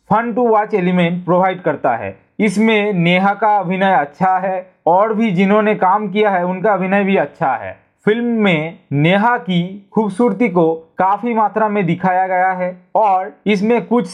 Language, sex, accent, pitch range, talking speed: Hindi, male, native, 175-210 Hz, 165 wpm